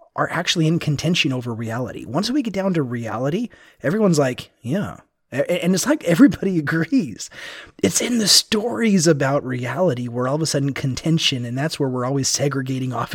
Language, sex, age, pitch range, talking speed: English, male, 30-49, 125-175 Hz, 185 wpm